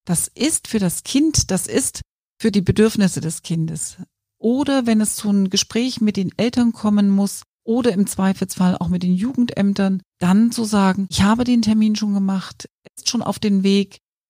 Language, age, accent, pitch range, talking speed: German, 40-59, German, 170-215 Hz, 185 wpm